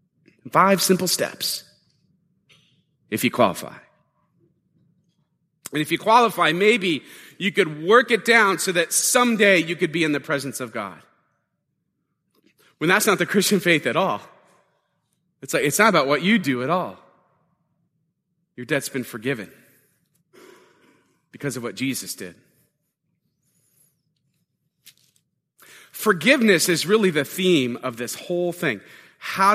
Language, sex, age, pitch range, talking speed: English, male, 30-49, 165-215 Hz, 130 wpm